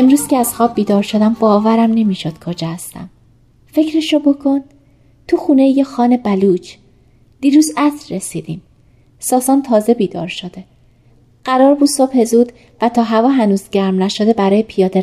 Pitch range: 170-245 Hz